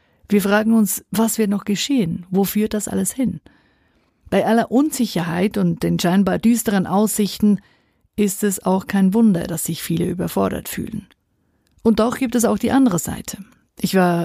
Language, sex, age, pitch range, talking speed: German, female, 50-69, 180-215 Hz, 170 wpm